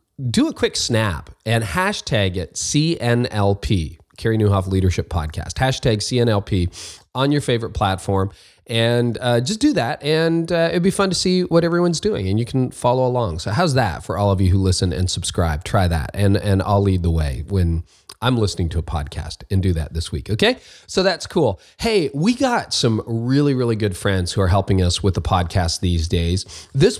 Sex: male